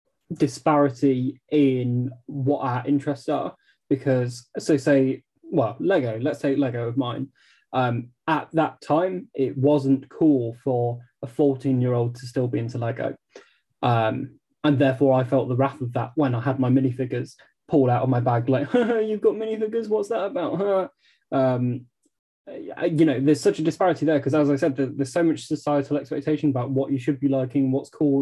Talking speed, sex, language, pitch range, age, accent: 185 wpm, male, English, 125-145 Hz, 10-29, British